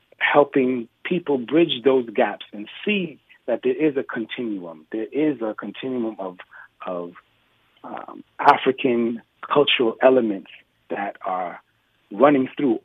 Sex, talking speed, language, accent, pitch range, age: male, 120 wpm, English, American, 110-140 Hz, 40-59